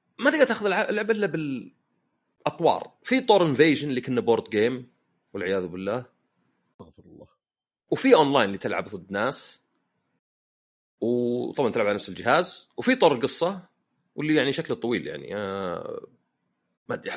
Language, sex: Arabic, male